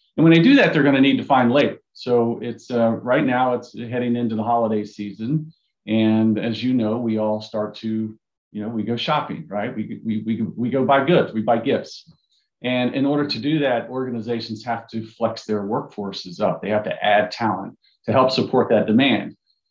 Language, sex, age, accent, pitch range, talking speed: English, male, 40-59, American, 110-130 Hz, 215 wpm